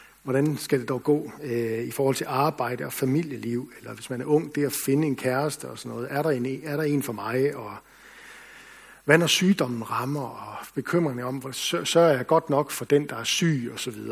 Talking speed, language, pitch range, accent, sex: 230 wpm, Danish, 125-150 Hz, native, male